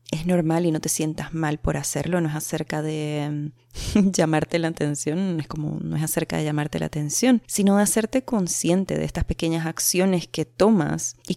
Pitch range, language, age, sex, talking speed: 155-210 Hz, Spanish, 20-39, female, 190 wpm